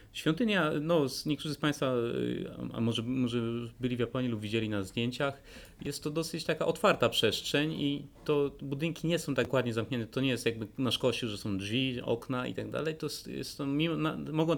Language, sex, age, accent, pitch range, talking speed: Polish, male, 30-49, native, 115-145 Hz, 180 wpm